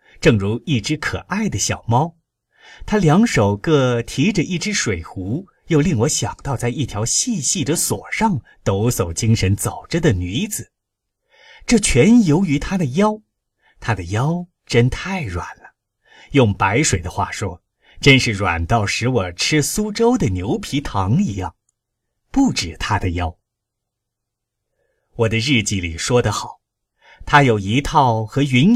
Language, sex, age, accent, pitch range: Chinese, male, 30-49, native, 110-170 Hz